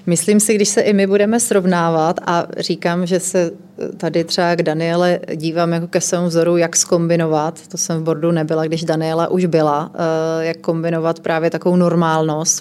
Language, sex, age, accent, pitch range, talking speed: Czech, female, 30-49, native, 165-180 Hz, 175 wpm